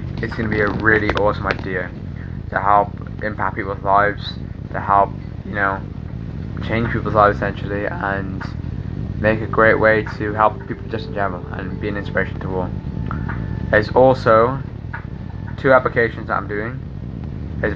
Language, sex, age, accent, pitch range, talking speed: English, male, 20-39, British, 100-115 Hz, 155 wpm